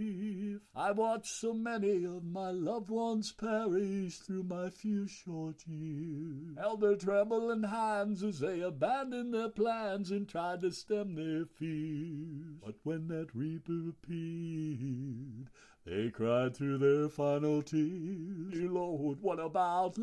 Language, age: English, 60-79